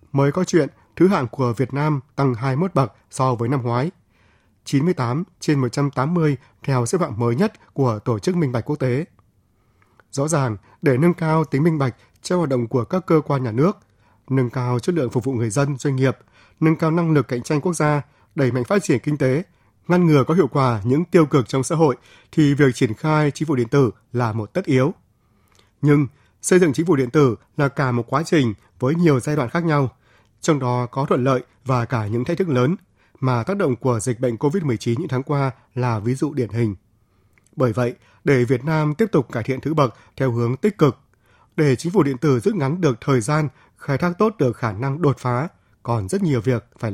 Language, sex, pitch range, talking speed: Vietnamese, male, 120-150 Hz, 225 wpm